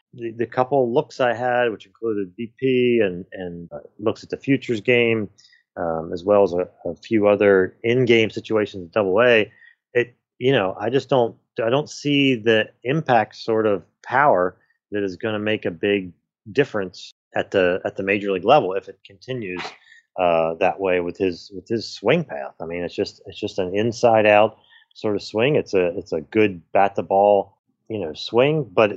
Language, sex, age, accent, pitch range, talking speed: English, male, 30-49, American, 95-120 Hz, 195 wpm